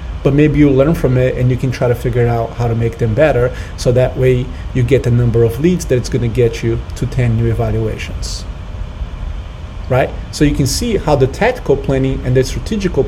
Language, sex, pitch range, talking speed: English, male, 105-140 Hz, 220 wpm